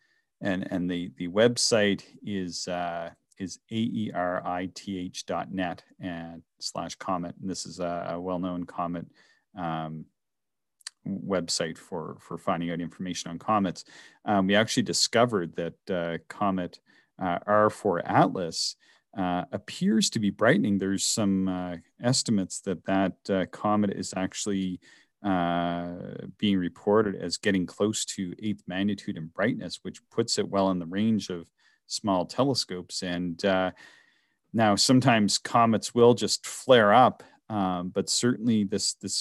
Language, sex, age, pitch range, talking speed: English, male, 40-59, 90-105 Hz, 135 wpm